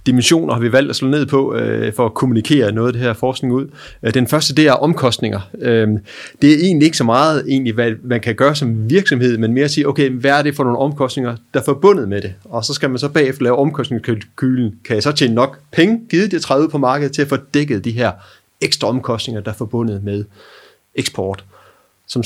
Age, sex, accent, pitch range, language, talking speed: 30-49, male, native, 115-145 Hz, Danish, 230 wpm